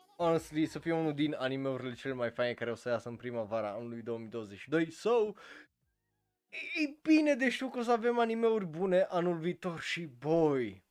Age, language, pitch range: 20-39, Romanian, 125-200 Hz